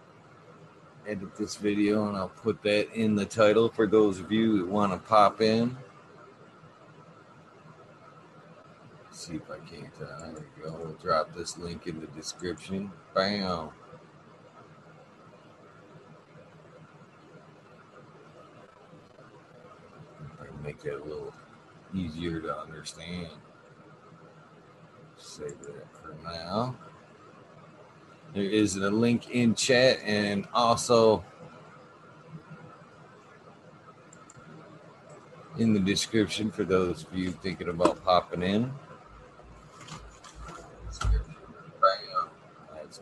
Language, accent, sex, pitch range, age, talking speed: English, American, male, 95-115 Hz, 50-69, 95 wpm